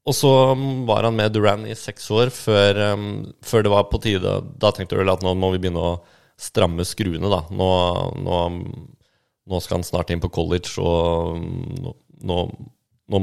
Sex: male